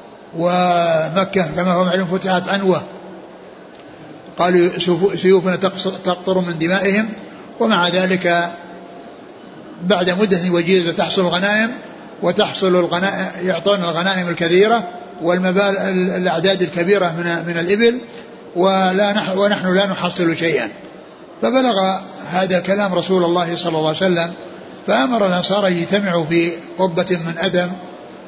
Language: Arabic